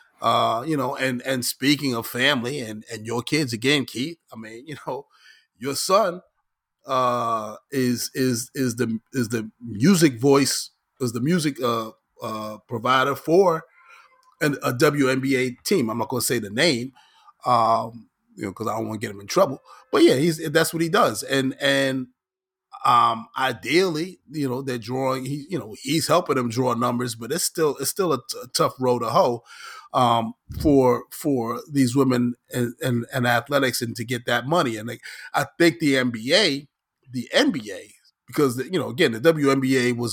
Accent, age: American, 30-49